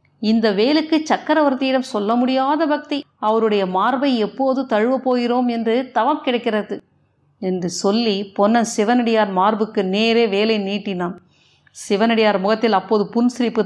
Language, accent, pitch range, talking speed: Tamil, native, 200-245 Hz, 115 wpm